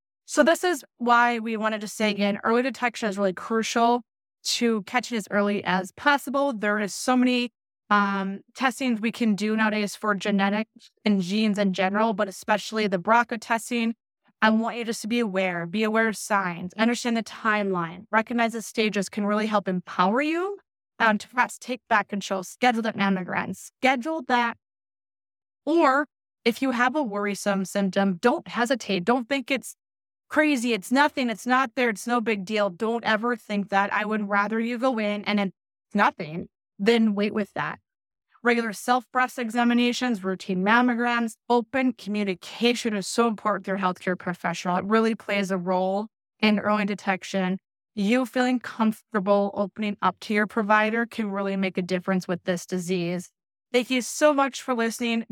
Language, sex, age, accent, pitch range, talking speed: English, female, 20-39, American, 200-240 Hz, 170 wpm